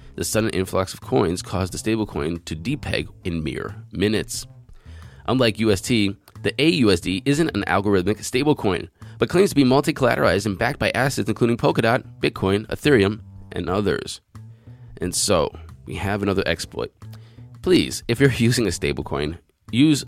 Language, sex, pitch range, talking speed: English, male, 95-120 Hz, 150 wpm